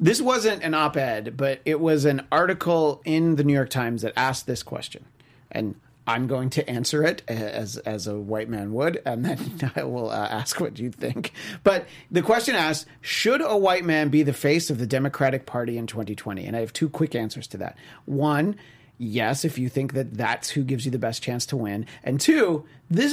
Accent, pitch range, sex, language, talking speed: American, 125-160 Hz, male, English, 215 wpm